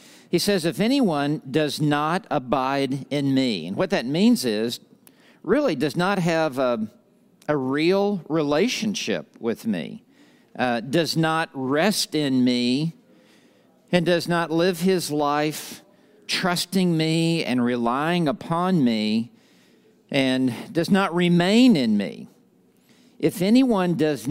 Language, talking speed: English, 125 wpm